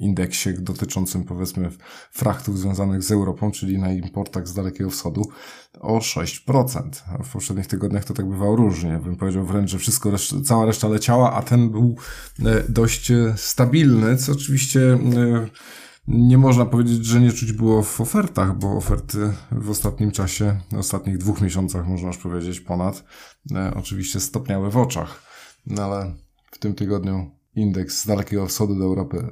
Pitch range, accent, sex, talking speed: 95-120 Hz, native, male, 155 wpm